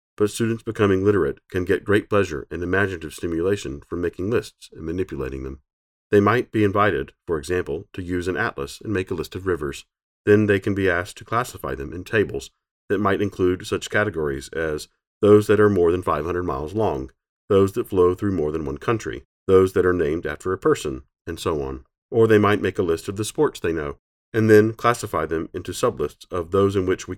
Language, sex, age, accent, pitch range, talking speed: English, male, 40-59, American, 80-105 Hz, 215 wpm